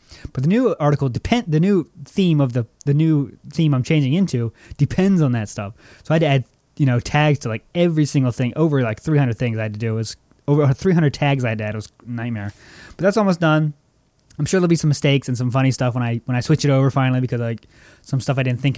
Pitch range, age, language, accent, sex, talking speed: 120-155 Hz, 20-39, English, American, male, 270 wpm